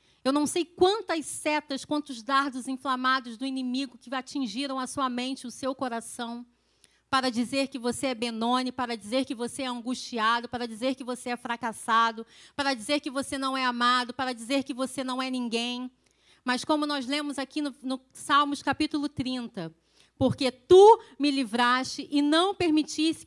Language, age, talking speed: Portuguese, 30-49, 175 wpm